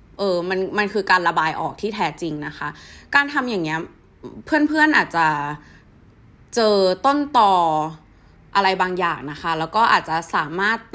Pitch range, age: 165-235 Hz, 20-39